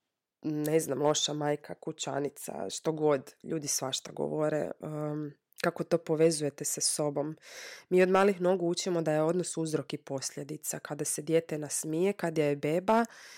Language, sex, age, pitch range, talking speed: Croatian, female, 20-39, 145-165 Hz, 155 wpm